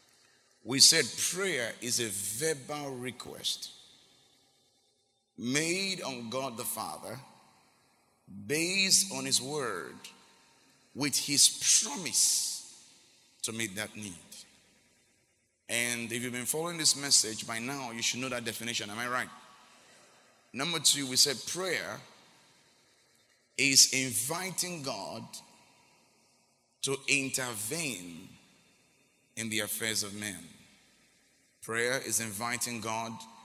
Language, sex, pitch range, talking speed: English, male, 110-140 Hz, 105 wpm